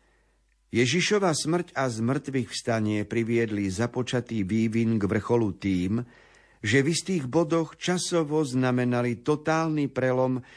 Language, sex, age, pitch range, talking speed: Slovak, male, 50-69, 110-140 Hz, 110 wpm